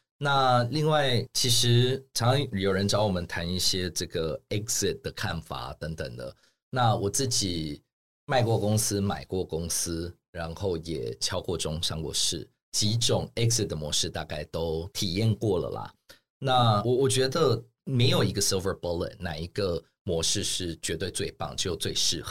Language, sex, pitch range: Chinese, male, 85-120 Hz